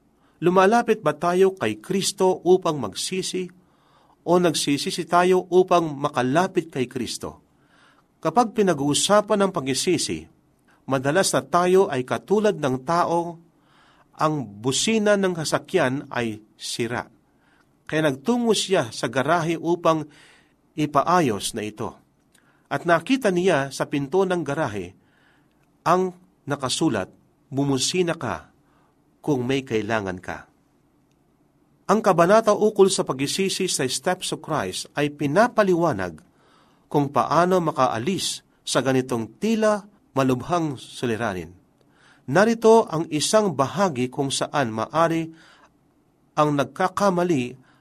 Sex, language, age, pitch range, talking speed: male, Filipino, 40-59, 135-185 Hz, 105 wpm